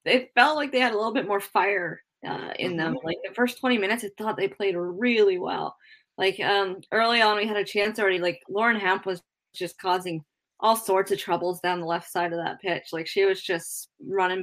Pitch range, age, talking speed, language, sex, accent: 170-205 Hz, 10-29, 230 wpm, English, female, American